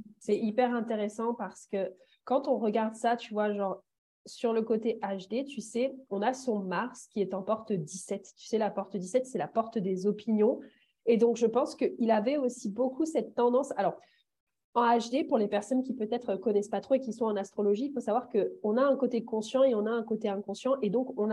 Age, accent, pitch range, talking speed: 30-49, French, 210-260 Hz, 225 wpm